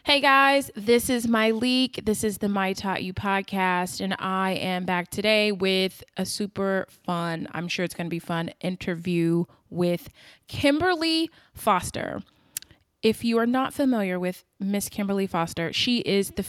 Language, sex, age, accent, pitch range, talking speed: English, female, 20-39, American, 175-215 Hz, 165 wpm